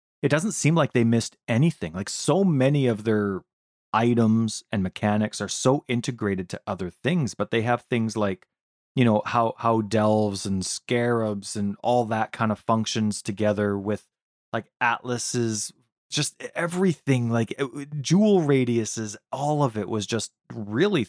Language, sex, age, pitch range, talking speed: English, male, 20-39, 105-120 Hz, 155 wpm